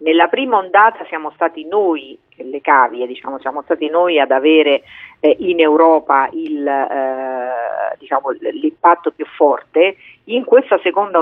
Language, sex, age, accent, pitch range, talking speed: Italian, female, 40-59, native, 145-205 Hz, 140 wpm